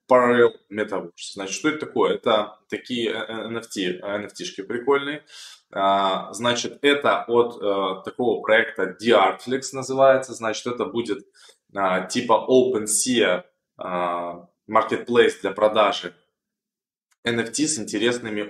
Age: 20-39